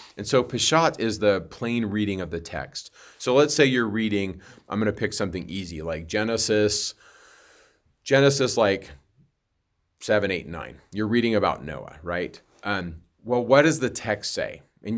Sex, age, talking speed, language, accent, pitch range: male, 30-49, 165 wpm, English, American, 100-115 Hz